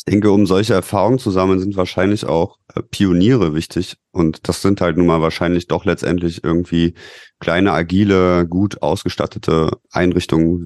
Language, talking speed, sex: English, 150 wpm, male